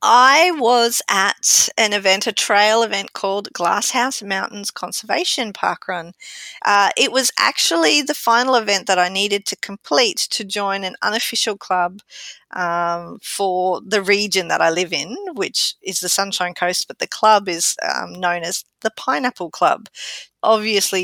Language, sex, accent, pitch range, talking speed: English, female, Australian, 185-240 Hz, 155 wpm